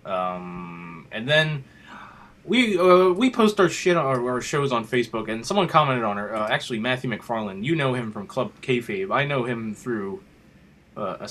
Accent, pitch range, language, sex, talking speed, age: American, 105-135 Hz, English, male, 190 wpm, 20-39